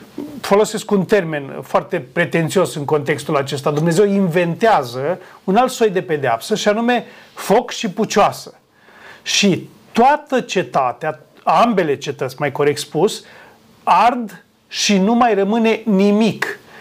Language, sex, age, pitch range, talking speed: Romanian, male, 30-49, 165-215 Hz, 120 wpm